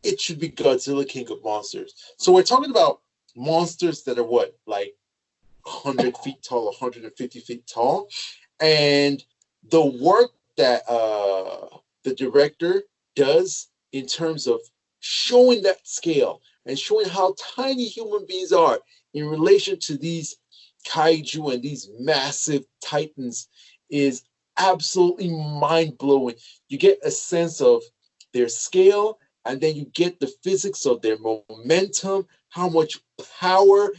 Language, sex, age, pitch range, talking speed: English, male, 30-49, 140-200 Hz, 130 wpm